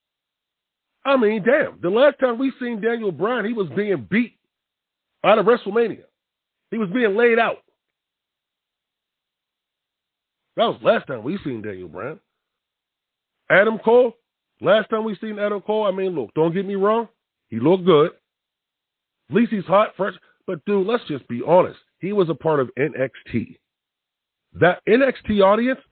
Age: 40-59